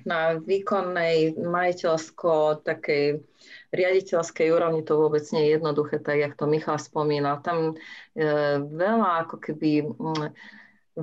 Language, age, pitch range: Slovak, 40-59, 150-190 Hz